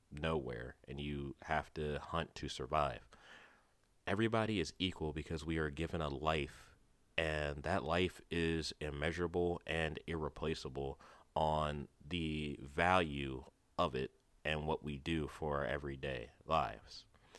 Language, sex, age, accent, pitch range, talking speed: English, male, 30-49, American, 75-90 Hz, 130 wpm